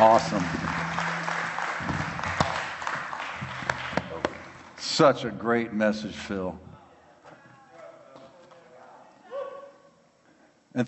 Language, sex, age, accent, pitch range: English, male, 50-69, American, 110-130 Hz